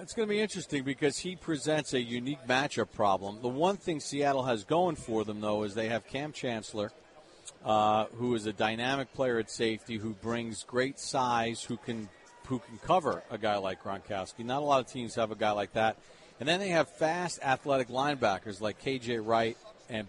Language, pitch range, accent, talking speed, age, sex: English, 115-150 Hz, American, 205 wpm, 40-59, male